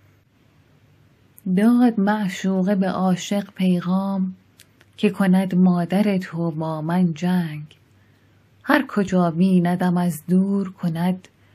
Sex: female